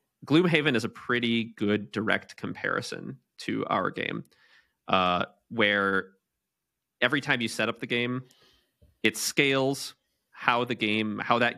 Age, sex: 30-49, male